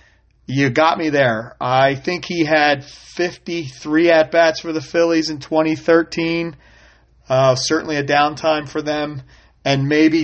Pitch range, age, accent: 130-175 Hz, 40-59, American